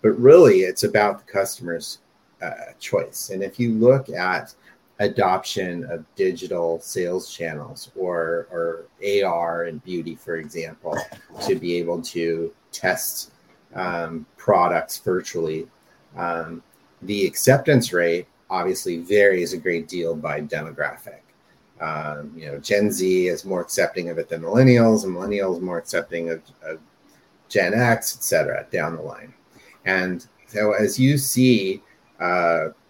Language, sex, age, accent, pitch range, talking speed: English, male, 30-49, American, 85-125 Hz, 135 wpm